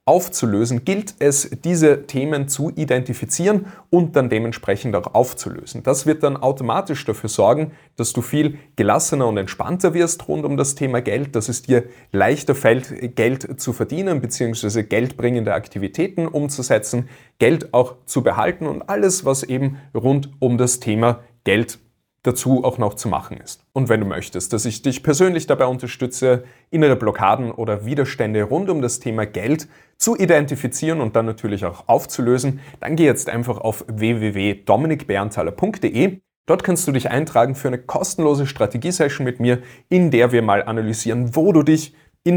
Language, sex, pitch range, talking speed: German, male, 110-145 Hz, 160 wpm